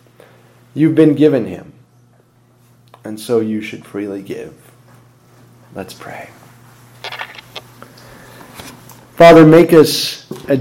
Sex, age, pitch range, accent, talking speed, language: male, 40-59, 120-145 Hz, American, 90 wpm, English